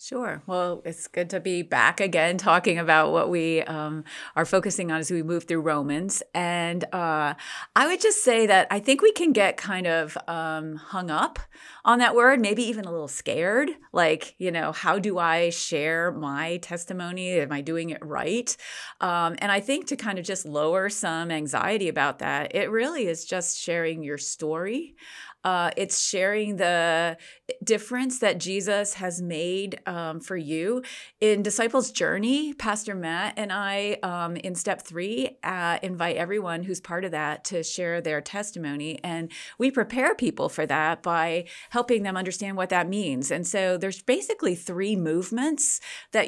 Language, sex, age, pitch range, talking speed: English, female, 30-49, 165-210 Hz, 175 wpm